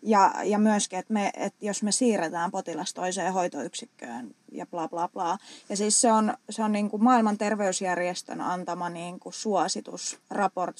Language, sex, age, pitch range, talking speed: Finnish, female, 20-39, 180-245 Hz, 170 wpm